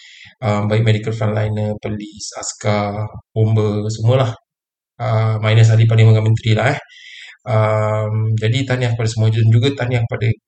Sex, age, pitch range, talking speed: male, 20-39, 110-120 Hz, 130 wpm